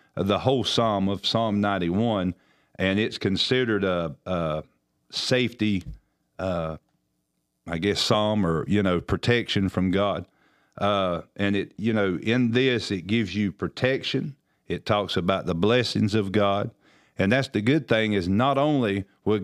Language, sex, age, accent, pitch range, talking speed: English, male, 50-69, American, 95-120 Hz, 150 wpm